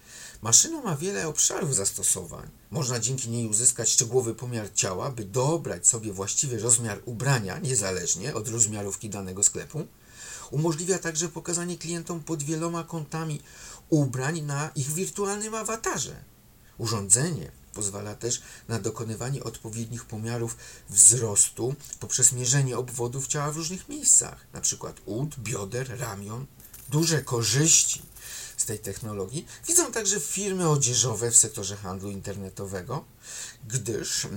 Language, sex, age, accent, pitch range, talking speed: Polish, male, 50-69, native, 115-155 Hz, 115 wpm